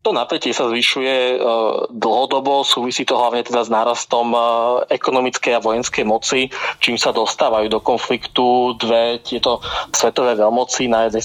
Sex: male